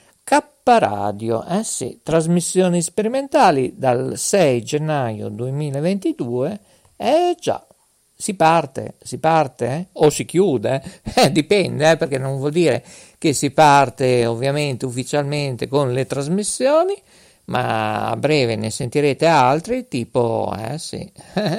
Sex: male